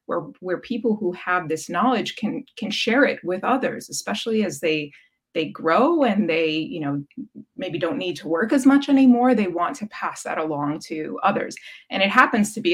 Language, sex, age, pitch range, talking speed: English, female, 20-39, 175-250 Hz, 205 wpm